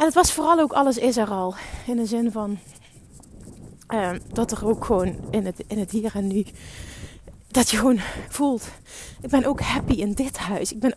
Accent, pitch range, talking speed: Dutch, 210-260 Hz, 210 wpm